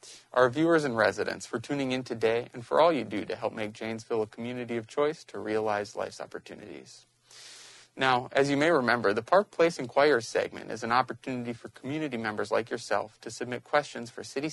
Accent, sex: American, male